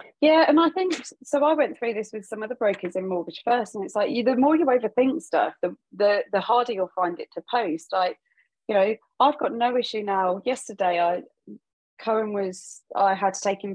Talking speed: 220 wpm